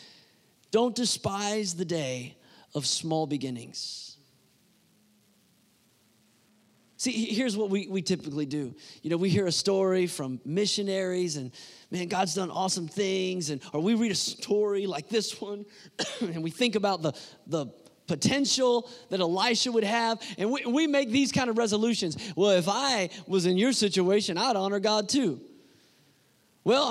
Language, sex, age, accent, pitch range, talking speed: English, male, 30-49, American, 180-240 Hz, 150 wpm